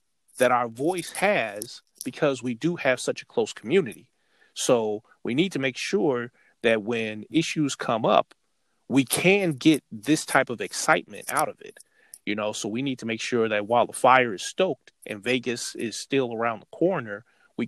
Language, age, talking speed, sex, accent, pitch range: English, 30-49, 185 wpm, male, American, 110-135 Hz